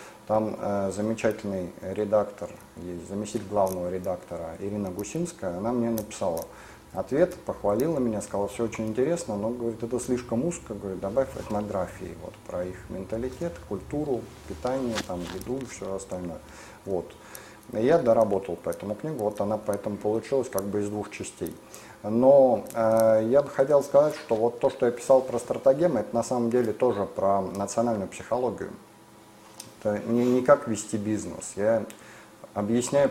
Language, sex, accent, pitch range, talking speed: Russian, male, native, 95-120 Hz, 150 wpm